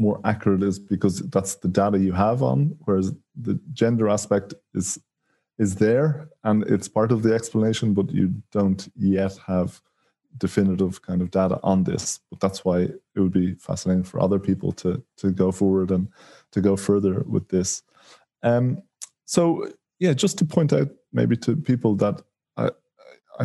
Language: English